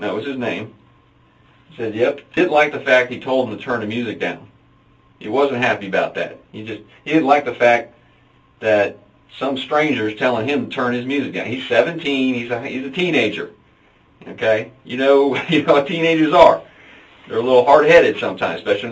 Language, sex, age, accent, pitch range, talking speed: English, male, 40-59, American, 120-170 Hz, 205 wpm